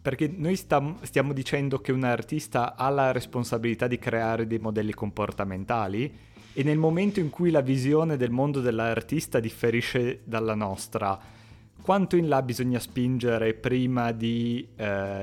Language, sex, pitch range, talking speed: Italian, male, 105-125 Hz, 140 wpm